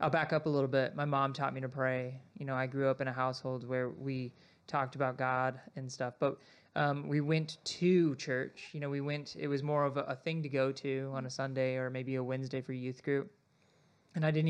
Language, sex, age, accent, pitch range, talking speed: English, male, 20-39, American, 130-145 Hz, 250 wpm